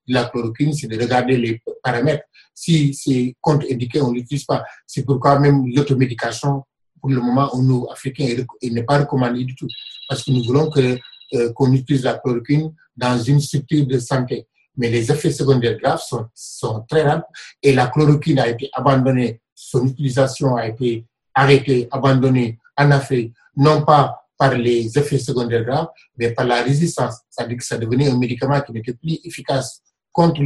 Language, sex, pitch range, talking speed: French, male, 125-145 Hz, 185 wpm